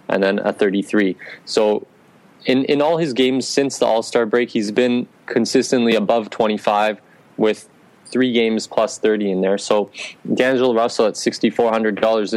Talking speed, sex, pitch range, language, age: 150 wpm, male, 105-120 Hz, English, 20-39